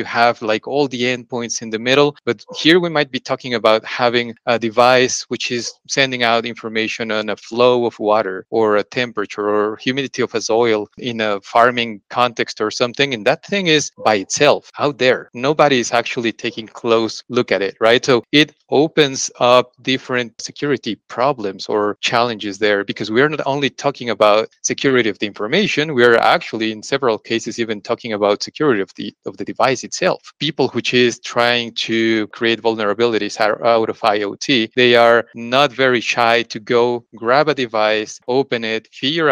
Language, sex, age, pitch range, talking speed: English, male, 30-49, 110-130 Hz, 185 wpm